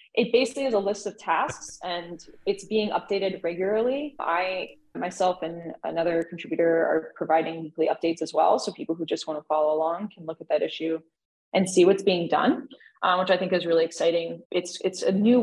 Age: 20-39